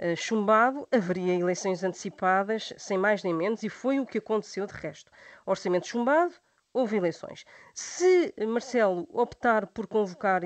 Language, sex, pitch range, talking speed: Portuguese, female, 190-240 Hz, 140 wpm